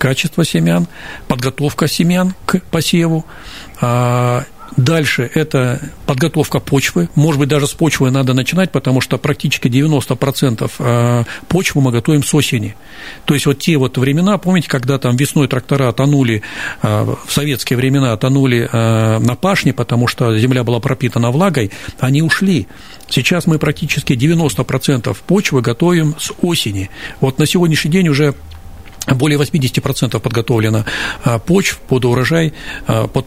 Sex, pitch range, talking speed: male, 125-155 Hz, 130 wpm